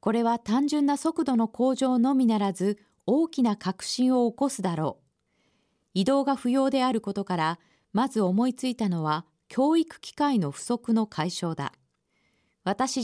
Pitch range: 195-265 Hz